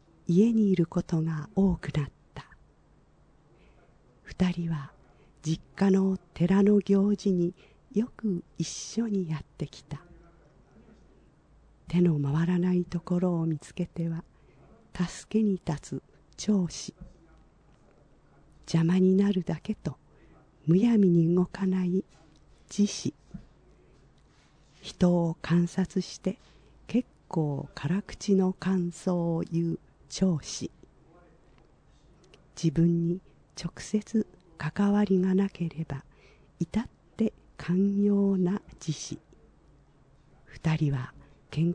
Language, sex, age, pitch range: Japanese, female, 50-69, 155-195 Hz